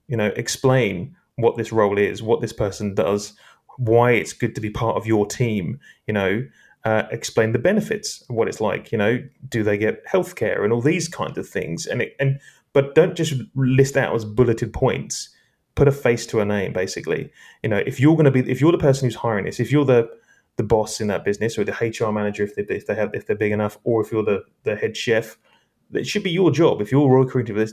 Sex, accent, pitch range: male, British, 105-130 Hz